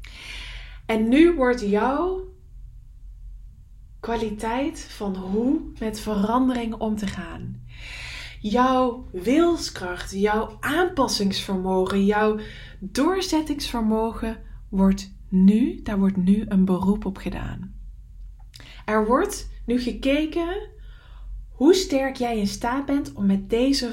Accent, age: Dutch, 20-39